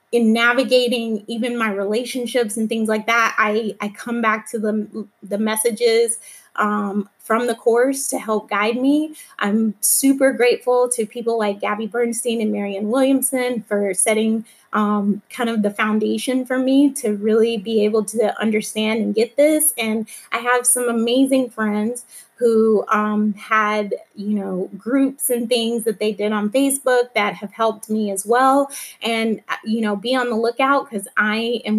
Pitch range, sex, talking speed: 215-250 Hz, female, 170 wpm